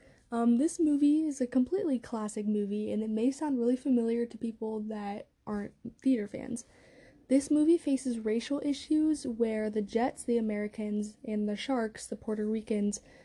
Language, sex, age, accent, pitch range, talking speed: English, female, 10-29, American, 215-255 Hz, 165 wpm